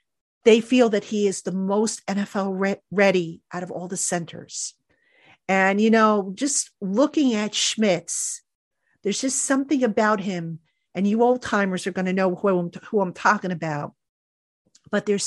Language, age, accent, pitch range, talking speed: English, 50-69, American, 185-225 Hz, 160 wpm